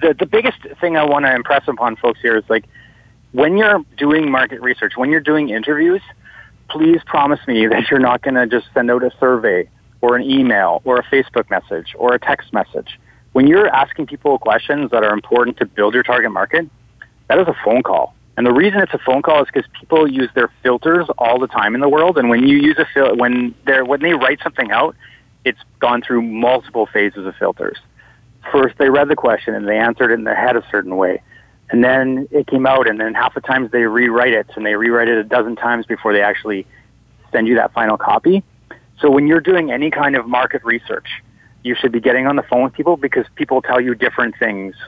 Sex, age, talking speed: male, 30-49, 225 wpm